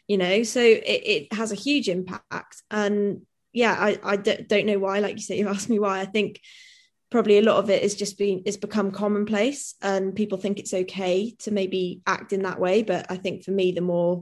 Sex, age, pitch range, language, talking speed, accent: female, 20-39, 180-205 Hz, English, 230 wpm, British